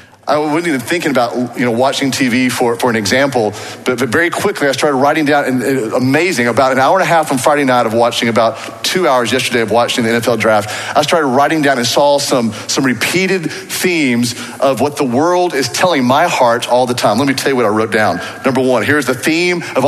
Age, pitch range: 40-59, 115-135 Hz